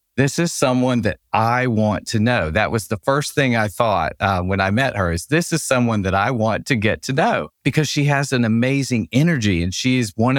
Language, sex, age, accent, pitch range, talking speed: English, male, 50-69, American, 90-120 Hz, 235 wpm